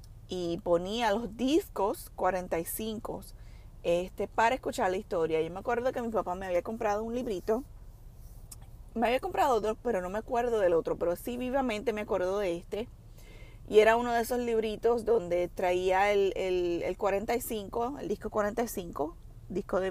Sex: female